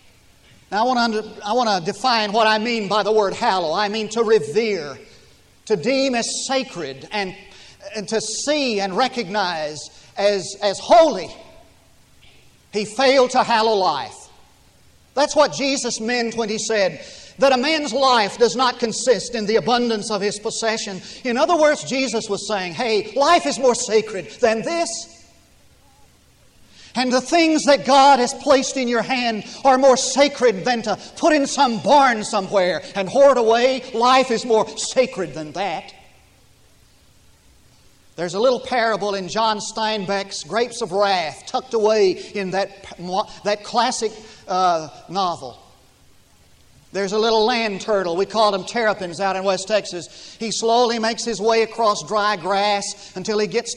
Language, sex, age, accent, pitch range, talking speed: English, male, 50-69, American, 195-245 Hz, 160 wpm